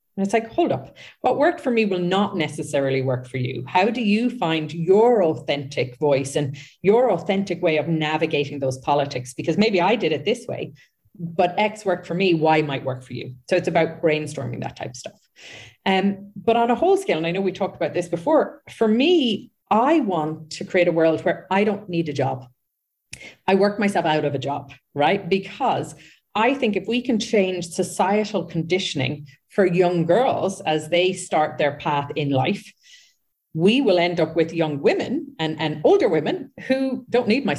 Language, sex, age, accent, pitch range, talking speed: English, female, 40-59, Irish, 155-205 Hz, 200 wpm